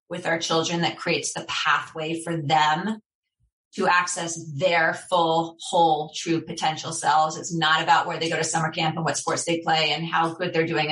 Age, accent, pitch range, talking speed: 30-49, American, 165-190 Hz, 200 wpm